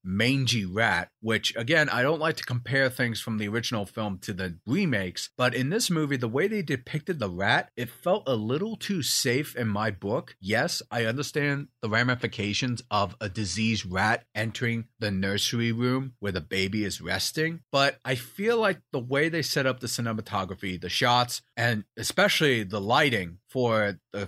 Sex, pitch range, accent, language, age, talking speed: male, 105-145 Hz, American, English, 30-49, 180 wpm